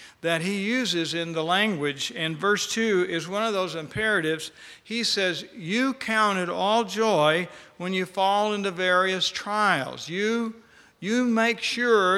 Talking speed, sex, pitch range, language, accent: 150 wpm, male, 180-225 Hz, English, American